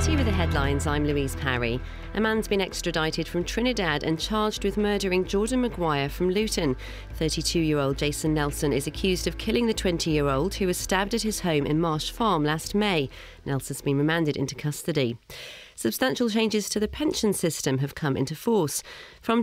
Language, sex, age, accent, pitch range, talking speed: English, female, 40-59, British, 140-205 Hz, 175 wpm